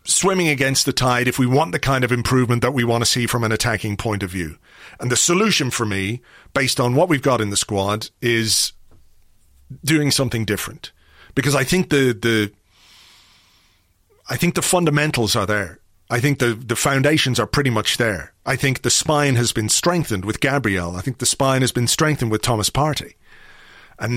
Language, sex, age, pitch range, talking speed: English, male, 40-59, 110-140 Hz, 195 wpm